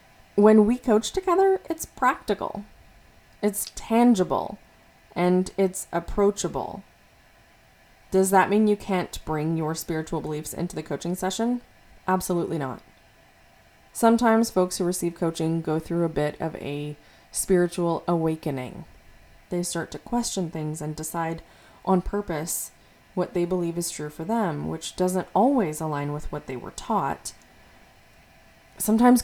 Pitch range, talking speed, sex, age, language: 160-205 Hz, 135 wpm, female, 20-39, English